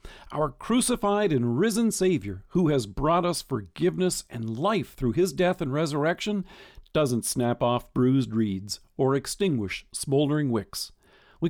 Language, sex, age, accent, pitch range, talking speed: English, male, 50-69, American, 125-175 Hz, 140 wpm